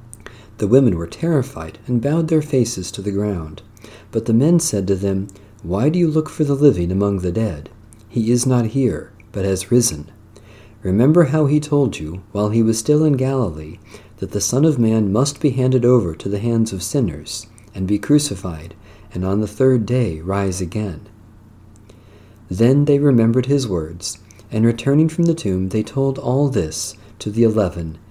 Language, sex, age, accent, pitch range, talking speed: English, male, 50-69, American, 95-125 Hz, 185 wpm